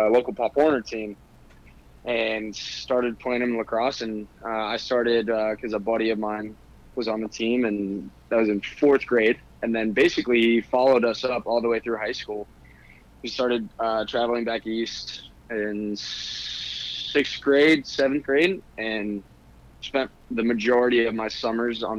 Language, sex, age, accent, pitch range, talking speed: English, male, 20-39, American, 100-115 Hz, 165 wpm